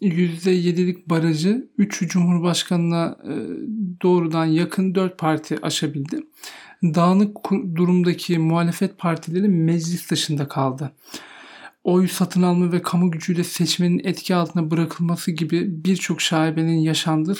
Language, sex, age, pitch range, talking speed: English, male, 40-59, 160-185 Hz, 105 wpm